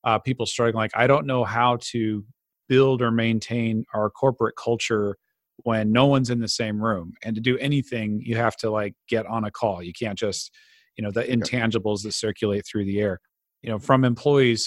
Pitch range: 110-130 Hz